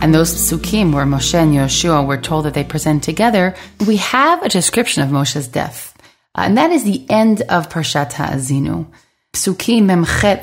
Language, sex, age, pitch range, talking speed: English, female, 30-49, 150-210 Hz, 175 wpm